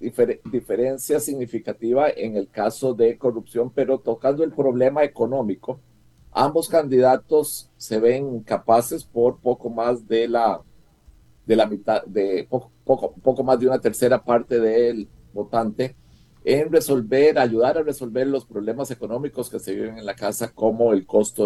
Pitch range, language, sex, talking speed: 110-130 Hz, Spanish, male, 150 wpm